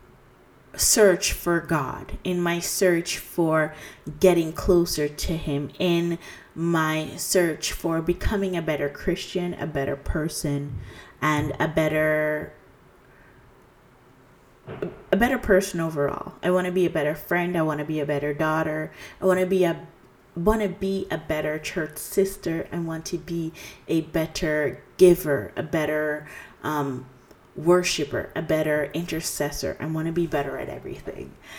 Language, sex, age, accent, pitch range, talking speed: English, female, 30-49, American, 150-175 Hz, 145 wpm